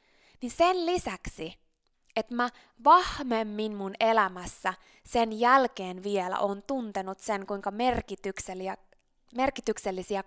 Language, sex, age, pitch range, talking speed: Finnish, female, 20-39, 195-275 Hz, 95 wpm